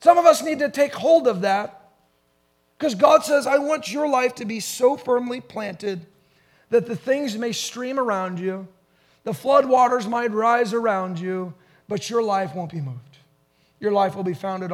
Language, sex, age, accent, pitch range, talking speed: English, male, 30-49, American, 180-250 Hz, 185 wpm